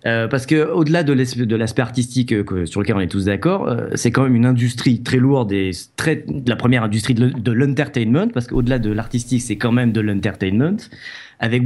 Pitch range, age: 110-150 Hz, 30-49